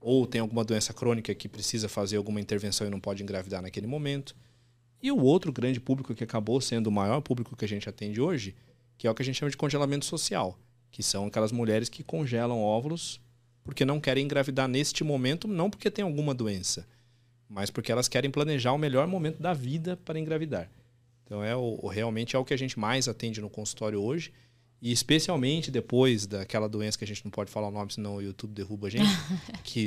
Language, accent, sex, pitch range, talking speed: Portuguese, Brazilian, male, 110-140 Hz, 215 wpm